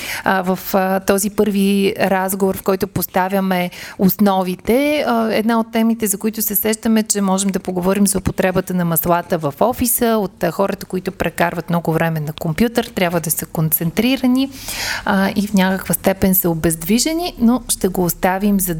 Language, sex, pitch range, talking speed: Bulgarian, female, 185-225 Hz, 155 wpm